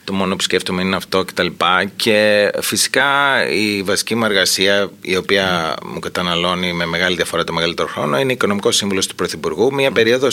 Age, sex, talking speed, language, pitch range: 30-49, male, 185 wpm, Greek, 90-110 Hz